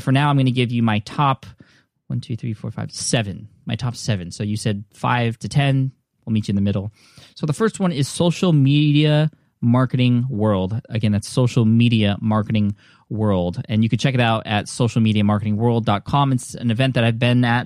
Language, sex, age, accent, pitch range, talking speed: English, male, 20-39, American, 105-130 Hz, 205 wpm